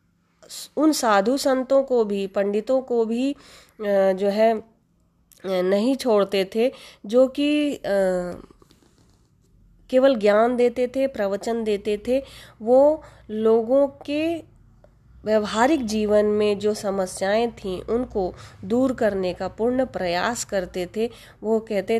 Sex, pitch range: female, 185-245 Hz